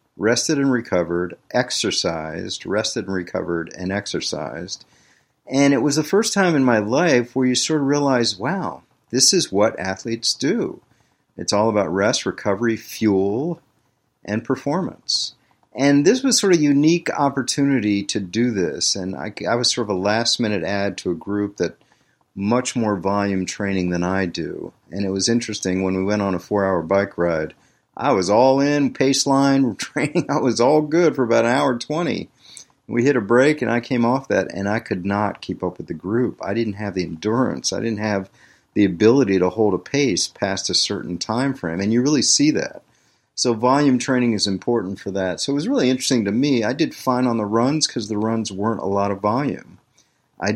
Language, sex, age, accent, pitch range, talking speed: English, male, 50-69, American, 95-130 Hz, 200 wpm